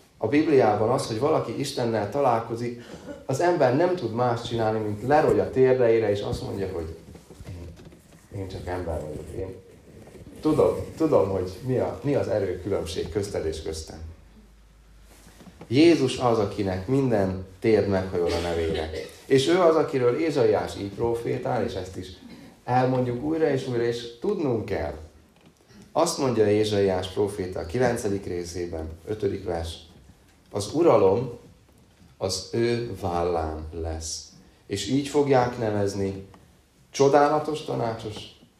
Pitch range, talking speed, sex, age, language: 85-120 Hz, 130 wpm, male, 30-49, Hungarian